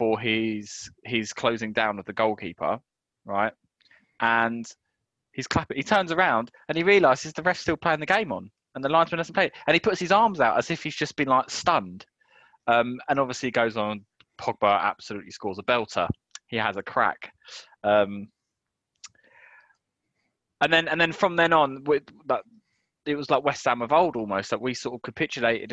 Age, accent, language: 20-39, British, English